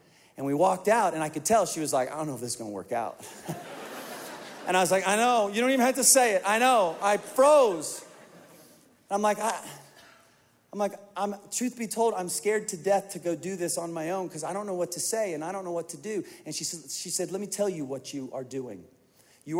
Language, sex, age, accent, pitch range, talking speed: English, male, 40-59, American, 165-240 Hz, 265 wpm